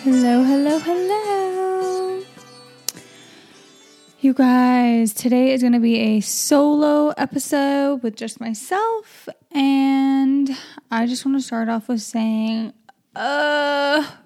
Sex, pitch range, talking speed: female, 220-270 Hz, 110 wpm